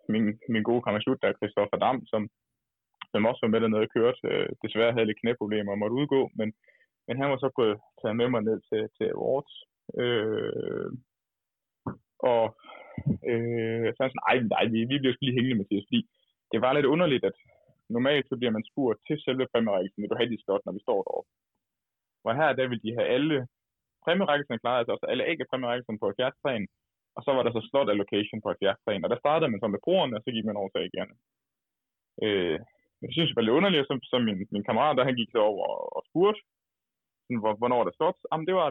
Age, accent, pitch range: 20-39, native, 110-155 Hz